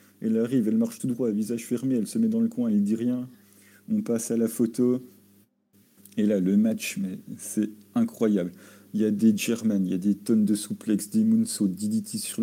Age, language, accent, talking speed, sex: 40-59, French, French, 215 wpm, male